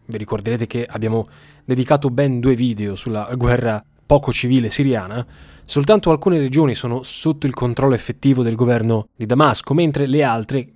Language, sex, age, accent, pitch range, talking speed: Italian, male, 20-39, native, 115-140 Hz, 155 wpm